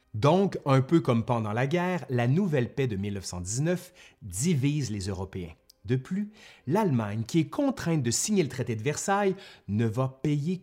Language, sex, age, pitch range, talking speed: French, male, 30-49, 110-155 Hz, 170 wpm